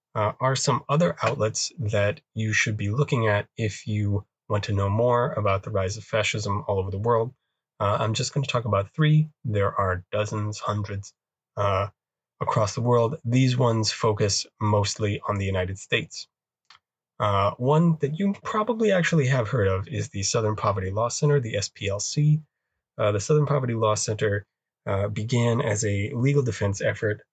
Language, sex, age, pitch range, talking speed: English, male, 20-39, 100-125 Hz, 175 wpm